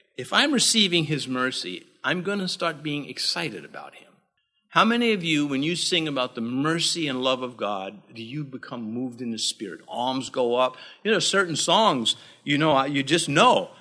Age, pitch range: 50-69, 135-195 Hz